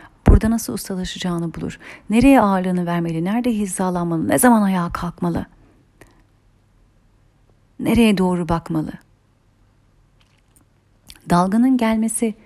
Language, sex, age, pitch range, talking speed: Turkish, female, 40-59, 175-220 Hz, 85 wpm